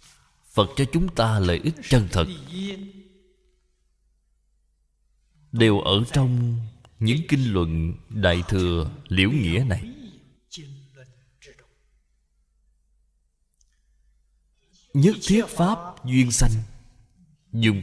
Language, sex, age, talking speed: Vietnamese, male, 20-39, 85 wpm